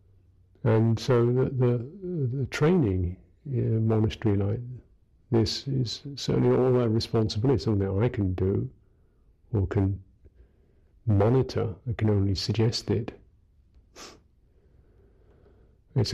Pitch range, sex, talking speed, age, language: 95-120 Hz, male, 115 wpm, 50-69, English